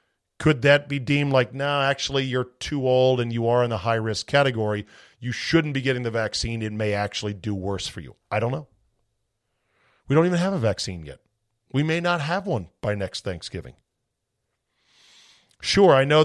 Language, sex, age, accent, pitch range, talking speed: English, male, 40-59, American, 105-135 Hz, 190 wpm